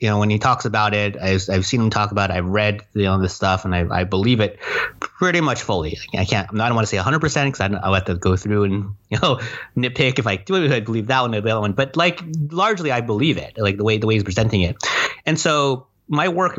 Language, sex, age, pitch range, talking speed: English, male, 30-49, 100-135 Hz, 280 wpm